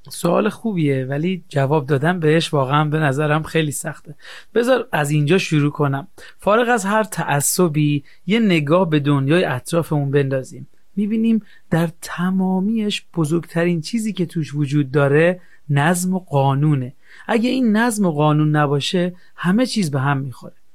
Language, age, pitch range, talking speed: Persian, 40-59, 150-190 Hz, 140 wpm